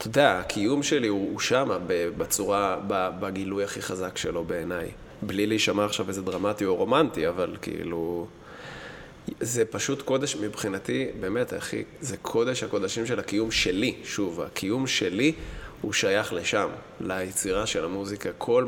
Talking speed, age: 140 wpm, 20-39